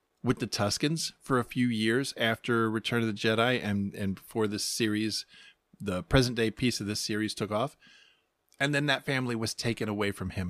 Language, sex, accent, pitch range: English, male, American, 110-140 Hz